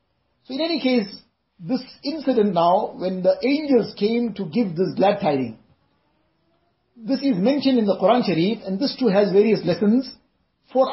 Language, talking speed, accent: English, 165 wpm, Indian